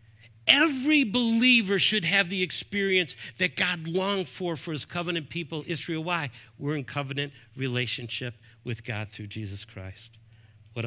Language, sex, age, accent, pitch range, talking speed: English, male, 50-69, American, 115-175 Hz, 145 wpm